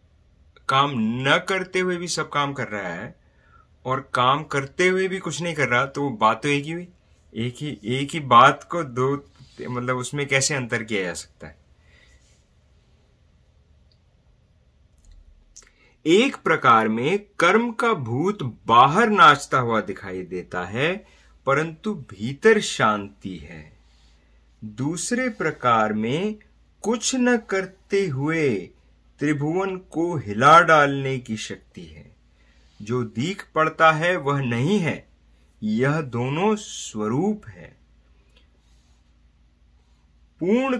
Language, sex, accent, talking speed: English, male, Indian, 120 wpm